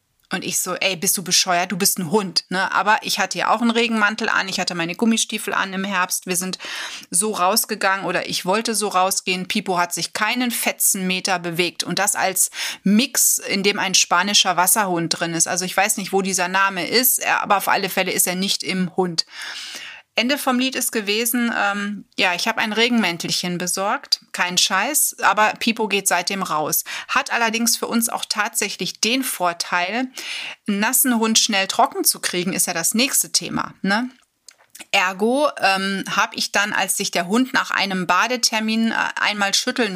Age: 30-49